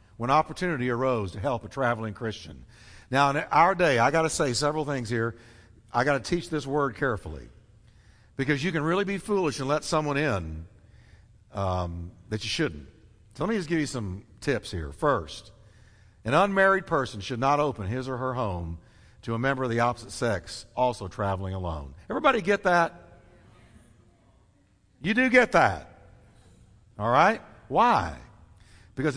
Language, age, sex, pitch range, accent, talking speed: English, 50-69, male, 100-155 Hz, American, 165 wpm